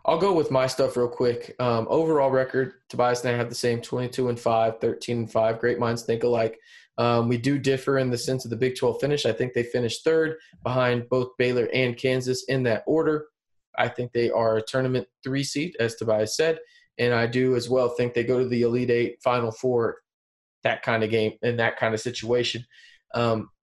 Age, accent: 20-39, American